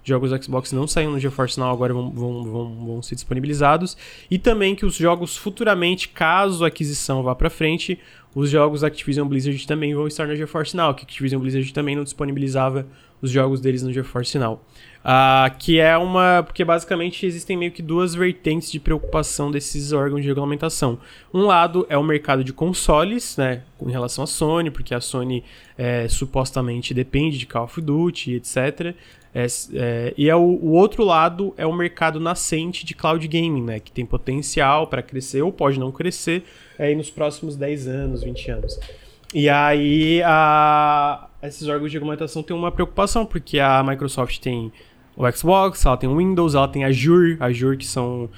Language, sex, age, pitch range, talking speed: Portuguese, male, 20-39, 130-160 Hz, 185 wpm